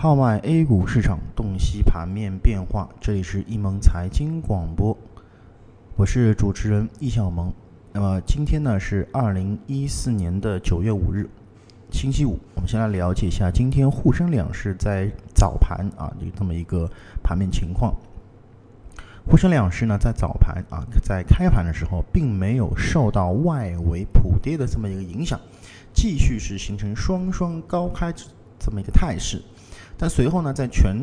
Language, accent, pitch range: Chinese, native, 95-125 Hz